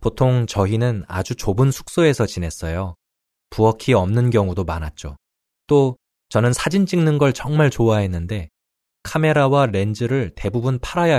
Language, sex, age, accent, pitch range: Korean, male, 20-39, native, 90-130 Hz